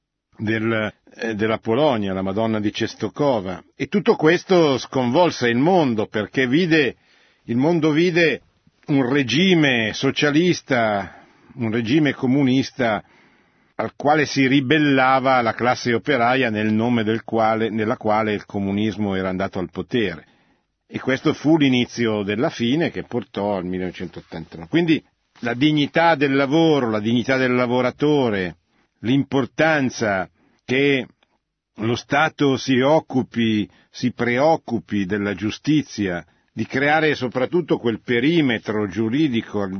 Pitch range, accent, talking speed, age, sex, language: 105-135 Hz, native, 120 wpm, 50-69, male, Italian